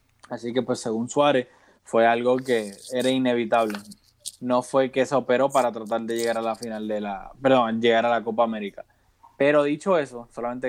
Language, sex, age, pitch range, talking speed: Spanish, male, 20-39, 130-185 Hz, 190 wpm